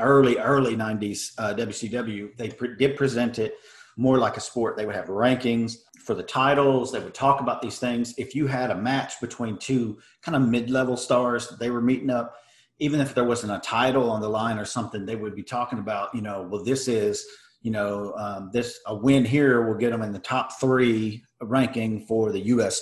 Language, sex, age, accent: English, male, 40-59, American